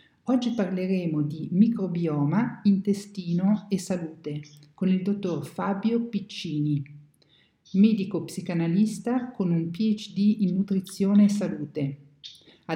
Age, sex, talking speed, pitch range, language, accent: 50-69, male, 100 wpm, 160-200 Hz, Italian, native